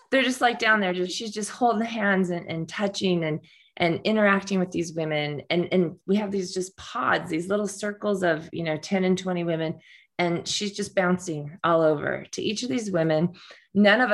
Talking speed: 205 wpm